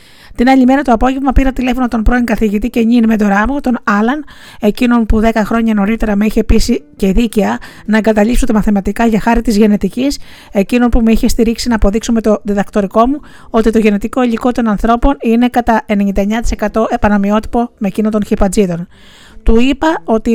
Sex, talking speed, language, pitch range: female, 185 wpm, Greek, 215-250 Hz